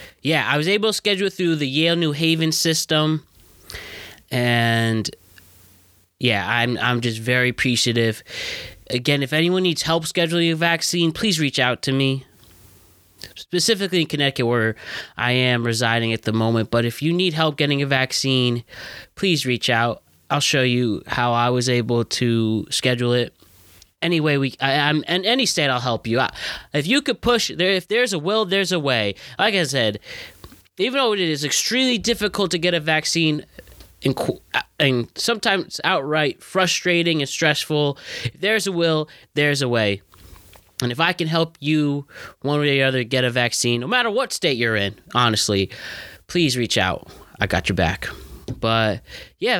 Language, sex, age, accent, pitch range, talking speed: English, male, 20-39, American, 115-170 Hz, 175 wpm